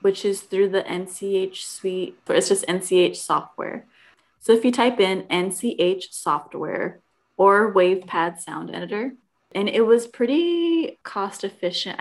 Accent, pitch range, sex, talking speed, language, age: American, 175-200 Hz, female, 140 wpm, English, 20-39